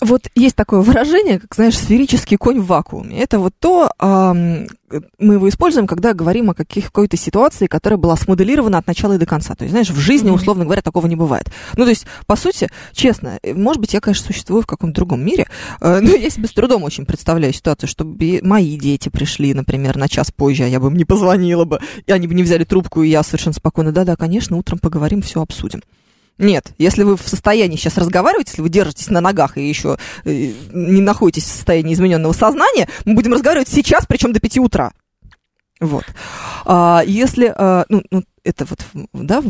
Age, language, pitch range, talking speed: 20-39, Russian, 165-220 Hz, 195 wpm